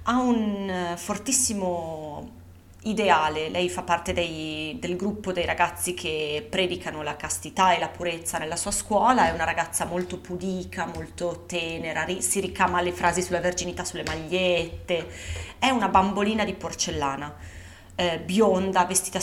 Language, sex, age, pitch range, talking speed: Italian, female, 30-49, 140-205 Hz, 140 wpm